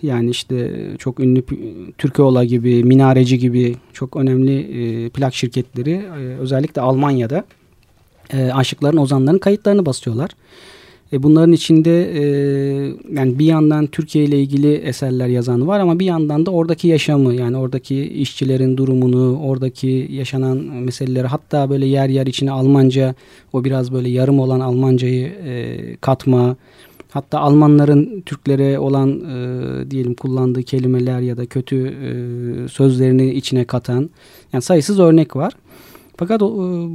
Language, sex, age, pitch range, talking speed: Turkish, male, 40-59, 125-150 Hz, 135 wpm